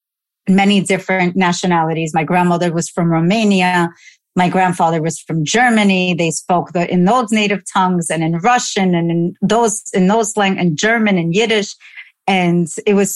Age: 40-59